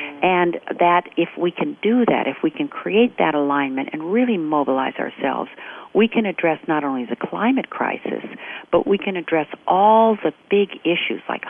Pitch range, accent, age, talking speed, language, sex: 145-185 Hz, American, 50-69, 175 wpm, English, female